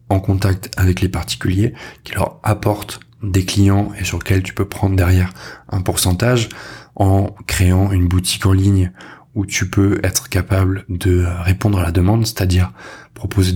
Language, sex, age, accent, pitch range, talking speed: French, male, 20-39, French, 90-110 Hz, 175 wpm